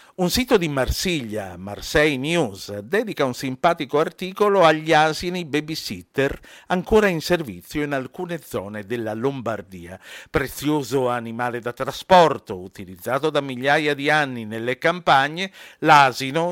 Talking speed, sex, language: 120 wpm, male, Italian